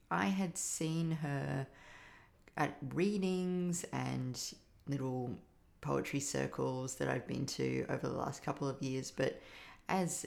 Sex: female